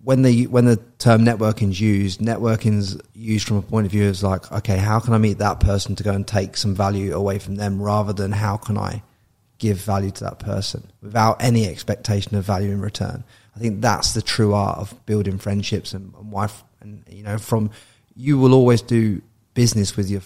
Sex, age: male, 30-49